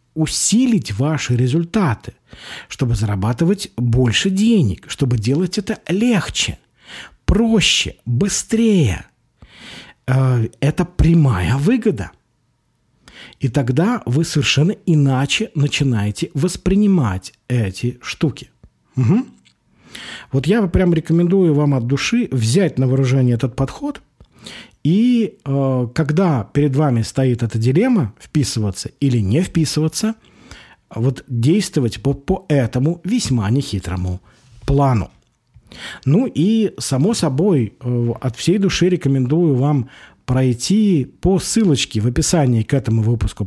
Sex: male